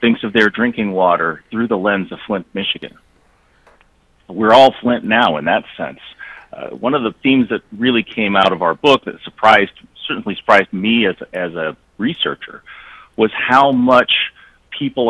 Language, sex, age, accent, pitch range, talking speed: English, male, 40-59, American, 100-135 Hz, 175 wpm